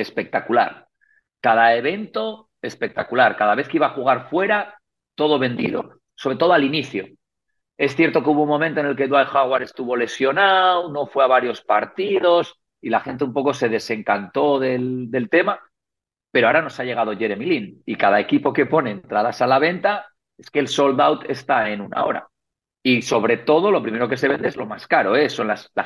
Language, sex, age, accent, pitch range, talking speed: Spanish, male, 50-69, Spanish, 120-170 Hz, 195 wpm